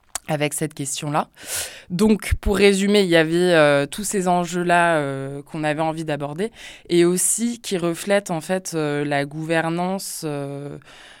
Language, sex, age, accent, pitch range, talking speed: French, female, 20-39, French, 150-175 Hz, 145 wpm